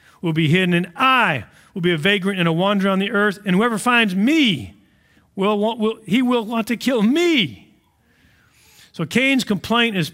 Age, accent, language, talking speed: 50-69, American, English, 190 wpm